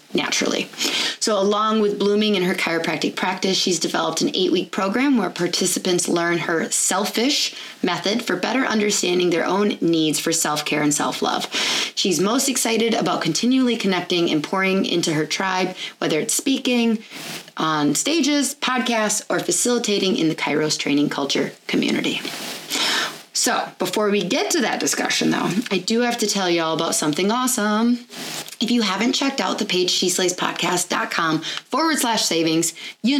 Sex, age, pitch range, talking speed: female, 20-39, 180-235 Hz, 155 wpm